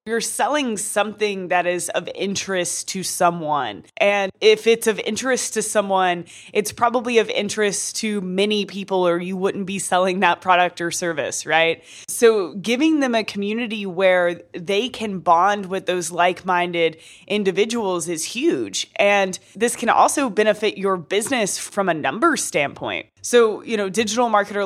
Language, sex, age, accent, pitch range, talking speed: English, female, 20-39, American, 180-225 Hz, 155 wpm